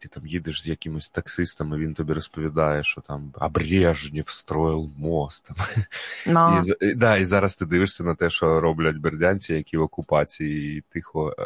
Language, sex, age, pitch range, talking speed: Ukrainian, male, 20-39, 80-100 Hz, 145 wpm